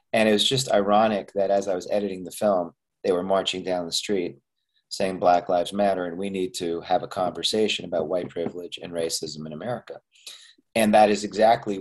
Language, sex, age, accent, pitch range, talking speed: English, male, 40-59, American, 90-120 Hz, 205 wpm